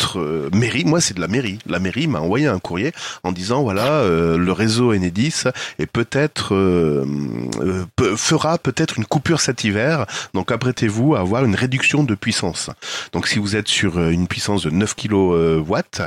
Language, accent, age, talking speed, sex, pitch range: French, French, 30-49, 185 wpm, male, 95-135 Hz